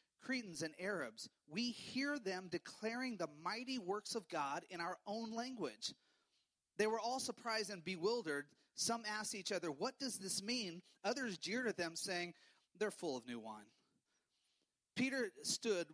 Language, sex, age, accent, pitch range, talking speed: English, male, 30-49, American, 165-230 Hz, 160 wpm